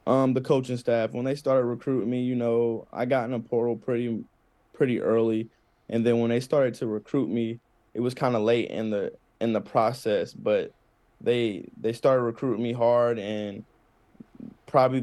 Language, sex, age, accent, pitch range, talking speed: English, male, 20-39, American, 105-120 Hz, 185 wpm